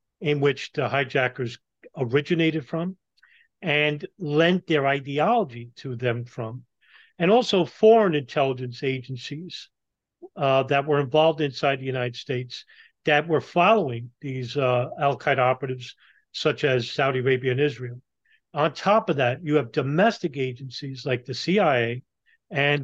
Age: 40-59